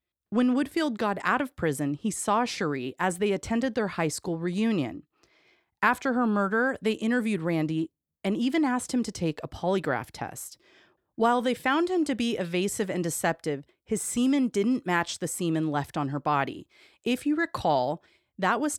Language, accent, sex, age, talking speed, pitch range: English, American, female, 30-49, 175 wpm, 160-225 Hz